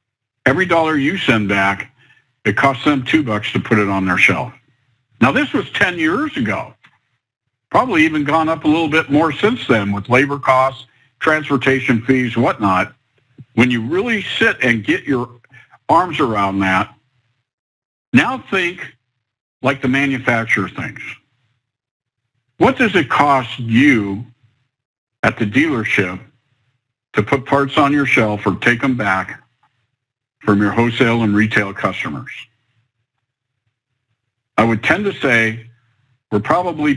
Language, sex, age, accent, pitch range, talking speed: English, male, 50-69, American, 115-135 Hz, 140 wpm